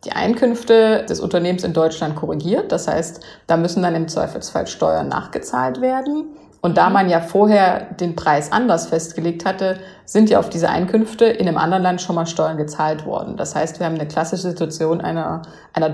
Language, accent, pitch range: German, German, 165-205 Hz